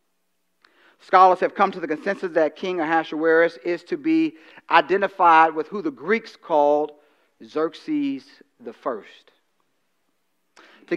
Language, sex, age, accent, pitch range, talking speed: English, male, 40-59, American, 155-200 Hz, 120 wpm